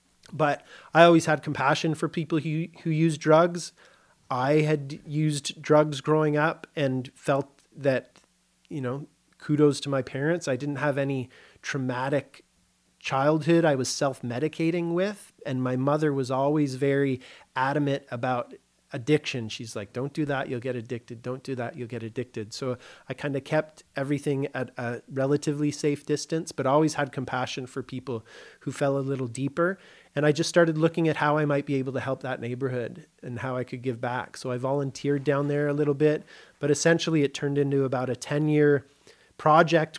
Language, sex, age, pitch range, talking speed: English, male, 30-49, 135-160 Hz, 180 wpm